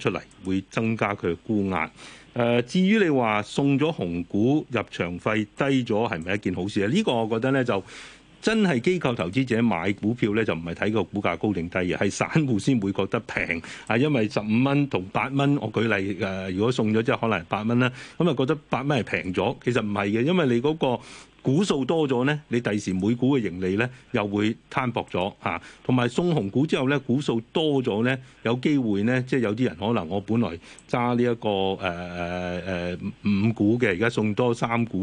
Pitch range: 100-125 Hz